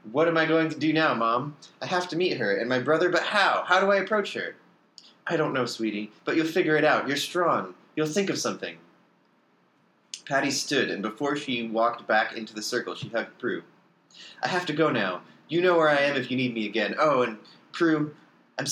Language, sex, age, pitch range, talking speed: English, male, 30-49, 110-160 Hz, 225 wpm